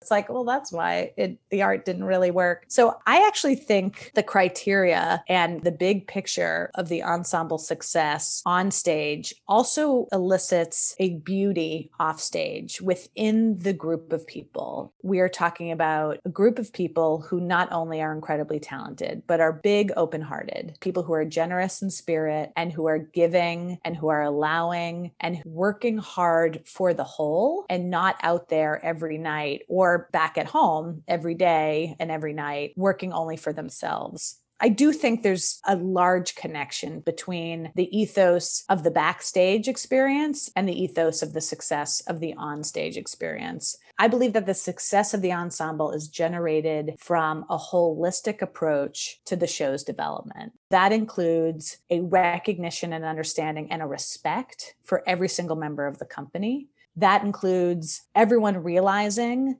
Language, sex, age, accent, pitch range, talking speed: English, female, 30-49, American, 160-195 Hz, 160 wpm